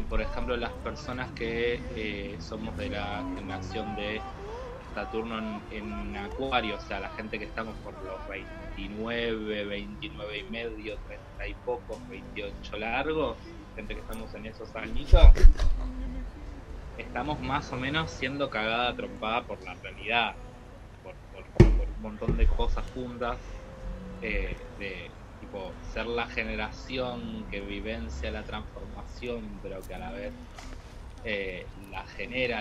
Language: Spanish